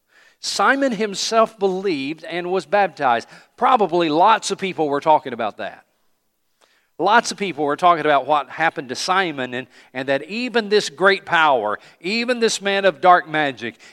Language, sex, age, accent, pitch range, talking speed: English, male, 50-69, American, 145-205 Hz, 160 wpm